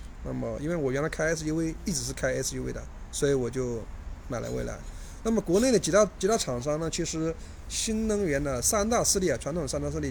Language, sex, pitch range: Chinese, male, 120-155 Hz